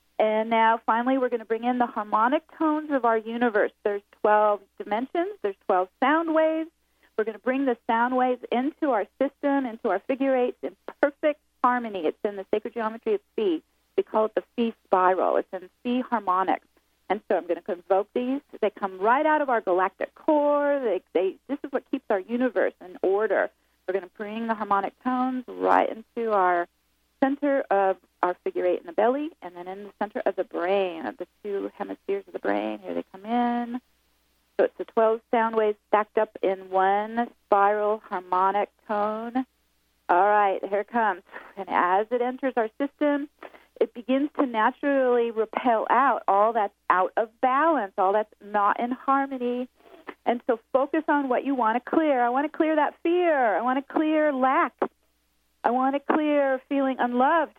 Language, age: English, 40-59